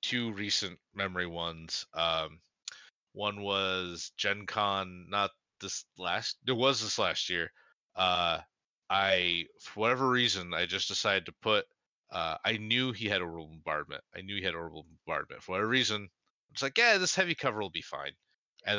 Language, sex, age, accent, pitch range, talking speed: English, male, 30-49, American, 90-110 Hz, 175 wpm